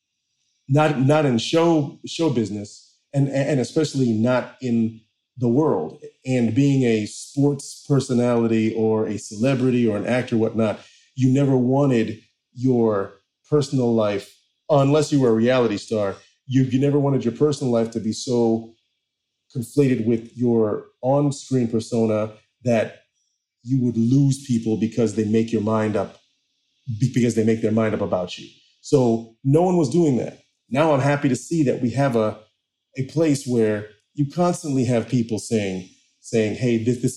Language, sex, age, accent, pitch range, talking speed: English, male, 30-49, American, 115-145 Hz, 160 wpm